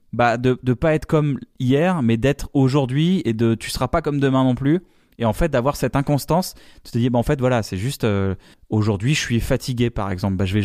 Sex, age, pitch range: male, 20-39, 115-155 Hz